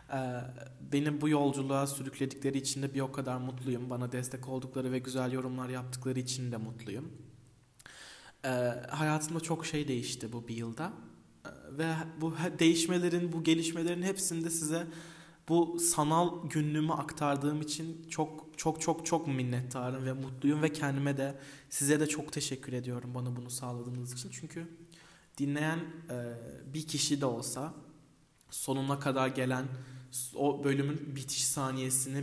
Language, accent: Turkish, native